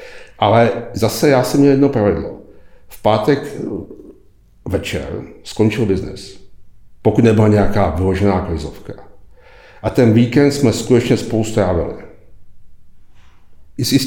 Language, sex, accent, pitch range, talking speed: Czech, male, native, 95-120 Hz, 100 wpm